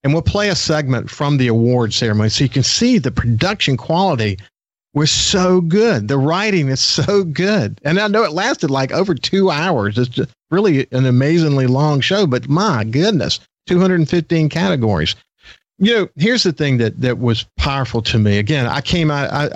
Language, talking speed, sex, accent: English, 185 wpm, male, American